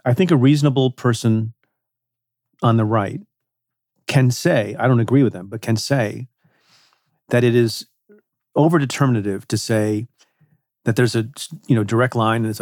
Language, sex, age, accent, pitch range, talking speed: English, male, 40-59, American, 110-135 Hz, 150 wpm